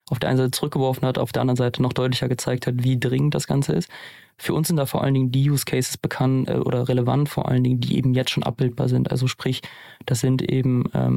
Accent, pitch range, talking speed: German, 125-140 Hz, 250 wpm